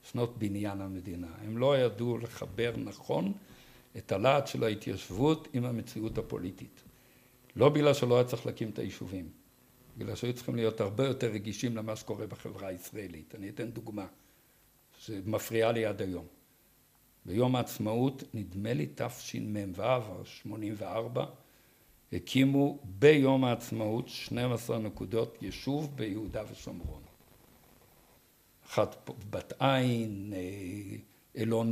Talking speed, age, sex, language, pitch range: 110 wpm, 60-79, male, Hebrew, 110-135 Hz